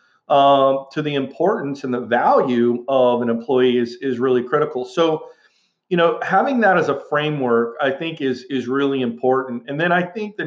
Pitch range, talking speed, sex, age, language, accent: 125-150 Hz, 190 wpm, male, 40-59, English, American